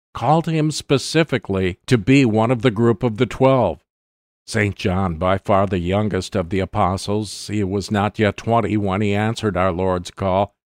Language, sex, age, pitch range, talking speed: English, male, 50-69, 95-130 Hz, 180 wpm